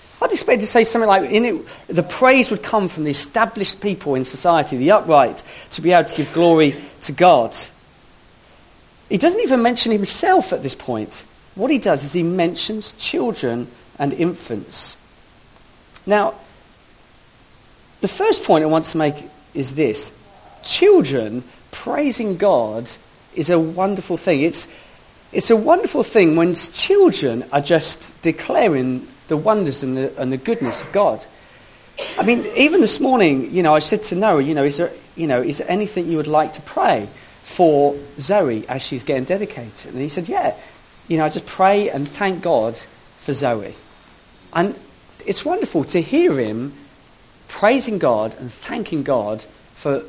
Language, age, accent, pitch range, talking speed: English, 40-59, British, 145-220 Hz, 165 wpm